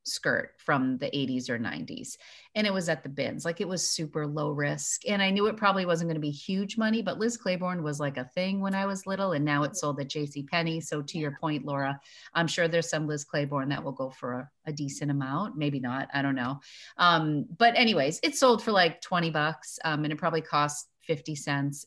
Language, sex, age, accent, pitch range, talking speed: English, female, 30-49, American, 145-190 Hz, 240 wpm